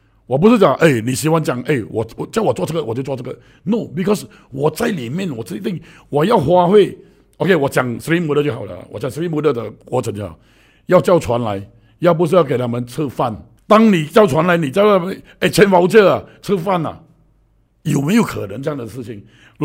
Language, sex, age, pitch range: Chinese, male, 60-79, 130-210 Hz